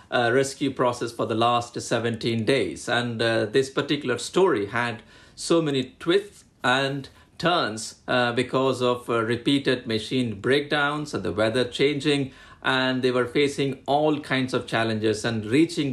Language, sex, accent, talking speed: English, male, Indian, 150 wpm